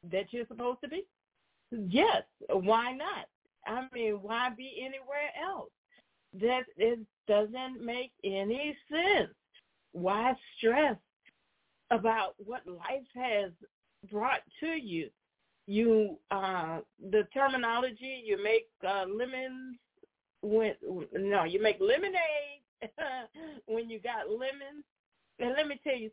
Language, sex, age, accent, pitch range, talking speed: English, female, 40-59, American, 200-275 Hz, 115 wpm